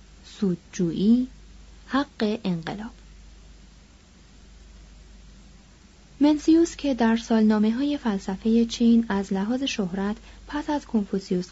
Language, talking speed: Persian, 85 wpm